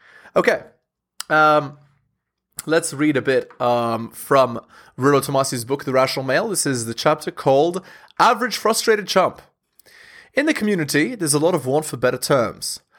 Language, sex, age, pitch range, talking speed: English, male, 20-39, 130-170 Hz, 155 wpm